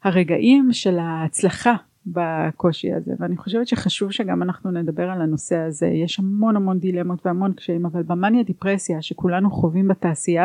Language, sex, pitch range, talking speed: Hebrew, female, 175-215 Hz, 150 wpm